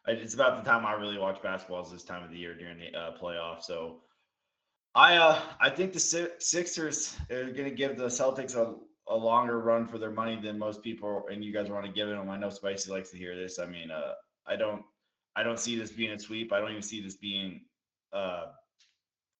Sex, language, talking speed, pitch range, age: male, English, 225 wpm, 95-115 Hz, 20-39